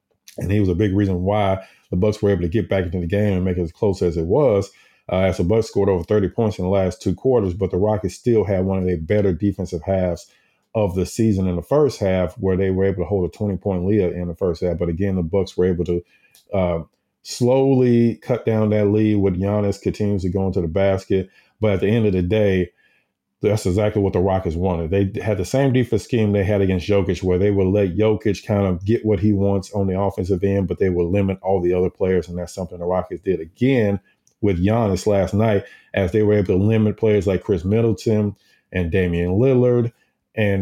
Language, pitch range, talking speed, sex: English, 90-105 Hz, 240 wpm, male